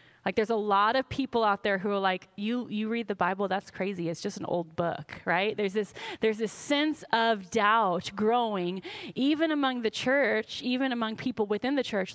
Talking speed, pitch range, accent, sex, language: 205 wpm, 205-280 Hz, American, female, English